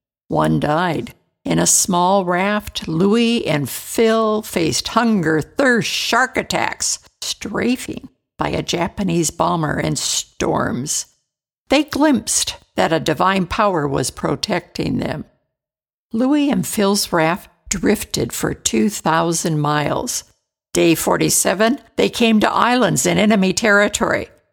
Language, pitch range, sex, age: English, 165-225 Hz, female, 60-79